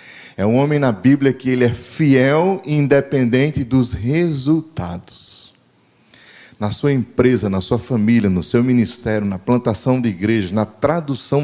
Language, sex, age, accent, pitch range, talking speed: Portuguese, male, 20-39, Brazilian, 110-150 Hz, 145 wpm